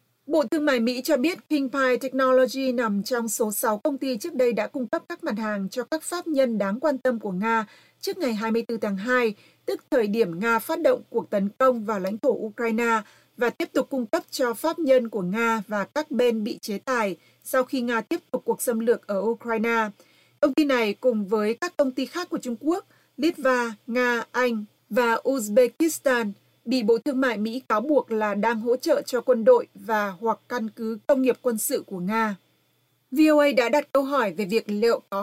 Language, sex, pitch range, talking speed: Vietnamese, female, 220-270 Hz, 215 wpm